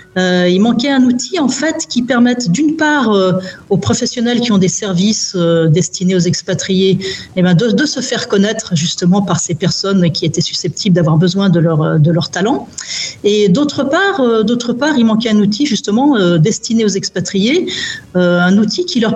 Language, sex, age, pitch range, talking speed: French, female, 40-59, 175-225 Hz, 195 wpm